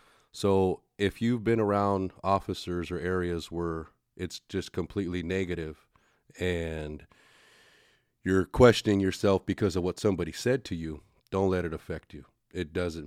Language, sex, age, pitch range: English, male, 30-49, 85-100 Hz